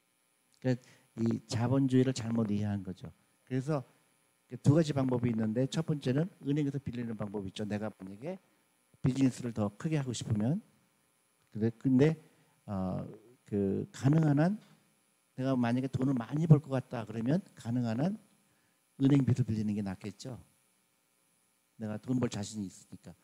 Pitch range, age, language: 95-140 Hz, 50-69, Korean